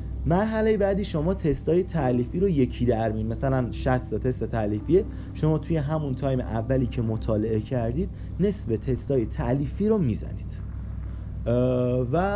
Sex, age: male, 30-49